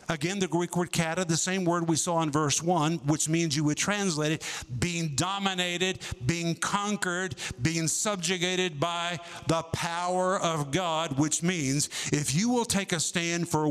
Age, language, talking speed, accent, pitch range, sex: 50-69, English, 170 wpm, American, 145-185 Hz, male